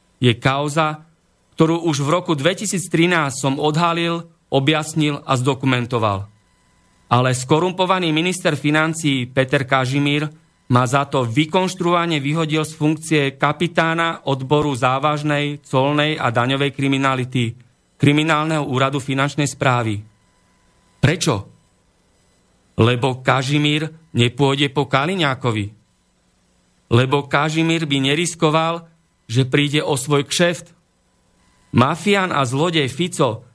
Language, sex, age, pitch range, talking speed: Slovak, male, 40-59, 125-160 Hz, 100 wpm